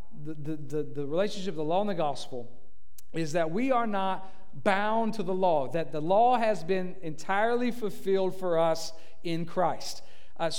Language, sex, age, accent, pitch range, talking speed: English, male, 40-59, American, 170-230 Hz, 175 wpm